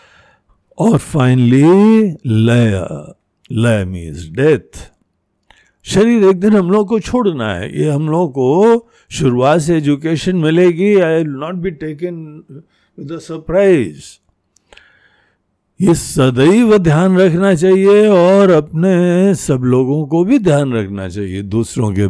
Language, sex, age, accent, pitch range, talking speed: Hindi, male, 60-79, native, 115-190 Hz, 115 wpm